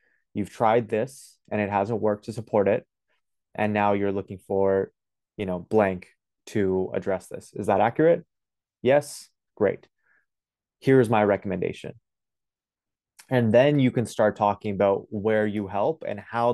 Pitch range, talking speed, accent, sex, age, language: 95-110 Hz, 150 wpm, American, male, 20-39, English